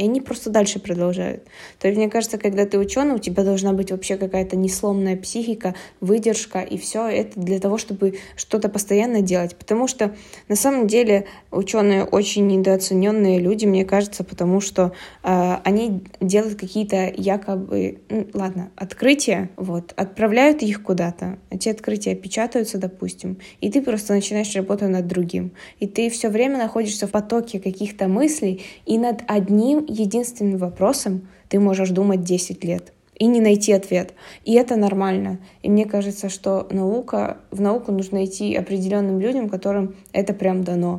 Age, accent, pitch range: 20-39, native, 185-210 Hz